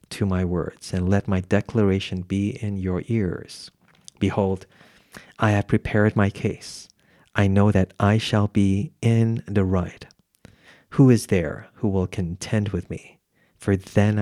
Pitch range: 95-110 Hz